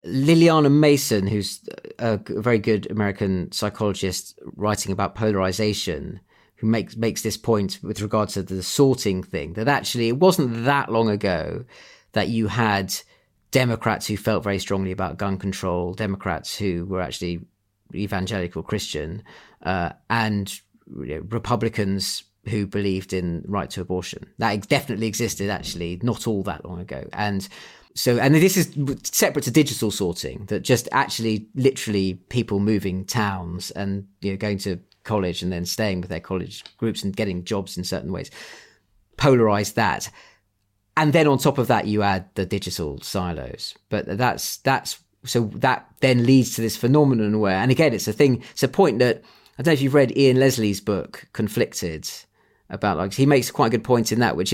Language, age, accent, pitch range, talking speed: English, 30-49, British, 95-120 Hz, 170 wpm